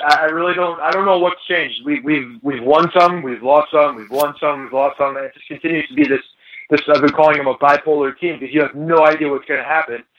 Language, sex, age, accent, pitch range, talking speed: English, male, 20-39, American, 135-165 Hz, 270 wpm